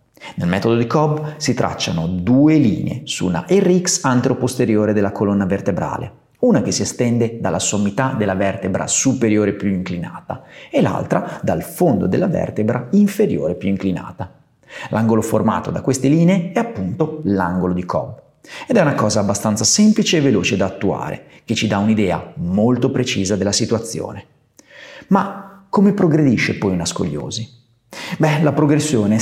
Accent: native